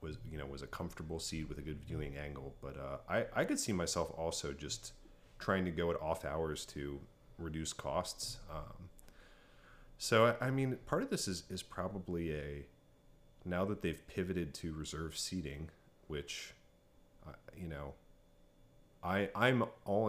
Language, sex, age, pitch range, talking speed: English, male, 40-59, 75-95 Hz, 165 wpm